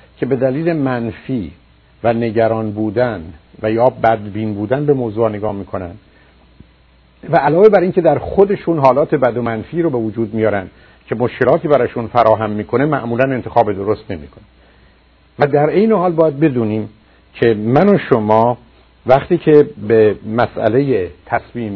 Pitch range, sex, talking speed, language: 100-135 Hz, male, 150 wpm, Persian